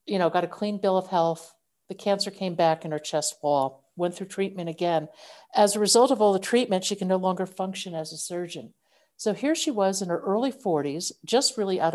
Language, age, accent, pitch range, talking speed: English, 50-69, American, 175-225 Hz, 230 wpm